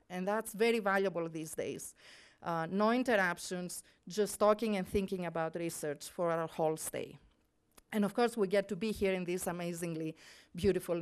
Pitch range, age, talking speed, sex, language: 185-240 Hz, 40-59, 170 wpm, female, English